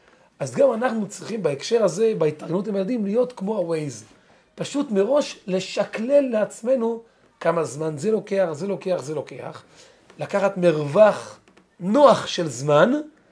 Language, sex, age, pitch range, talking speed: Hebrew, male, 40-59, 165-225 Hz, 130 wpm